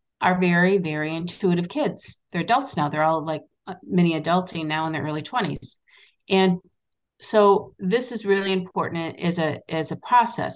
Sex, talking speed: female, 165 wpm